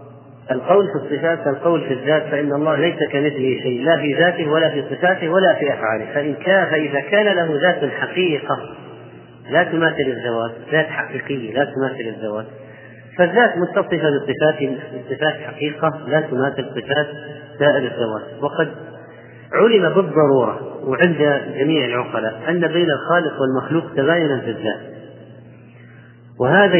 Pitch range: 130-170 Hz